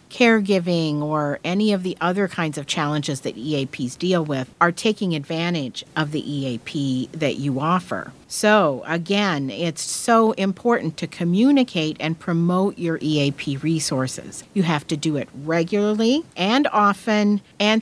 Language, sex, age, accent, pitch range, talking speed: English, female, 50-69, American, 155-205 Hz, 145 wpm